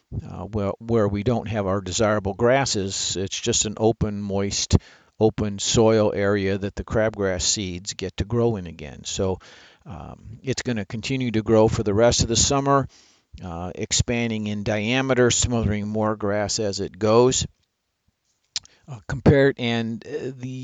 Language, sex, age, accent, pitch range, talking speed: English, male, 50-69, American, 105-120 Hz, 155 wpm